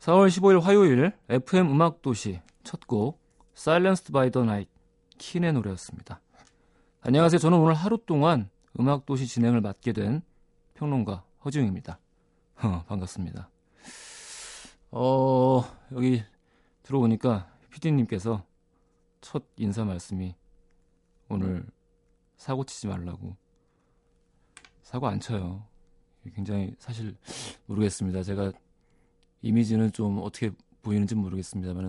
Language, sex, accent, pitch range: Korean, male, native, 95-125 Hz